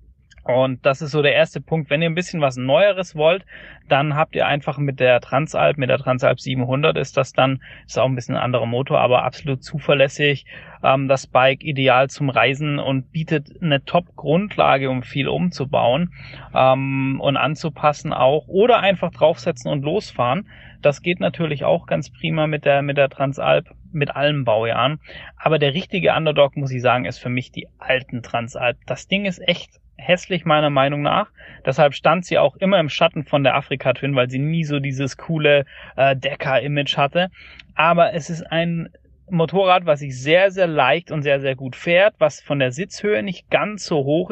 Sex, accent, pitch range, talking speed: male, German, 135-165 Hz, 185 wpm